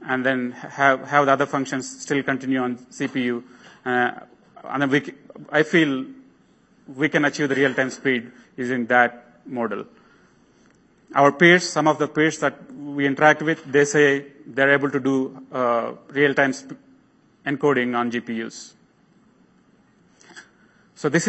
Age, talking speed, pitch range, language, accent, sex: 30-49, 150 wpm, 130-150 Hz, English, Indian, male